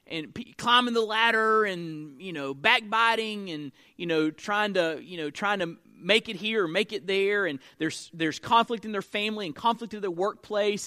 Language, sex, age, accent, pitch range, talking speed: English, male, 30-49, American, 160-230 Hz, 200 wpm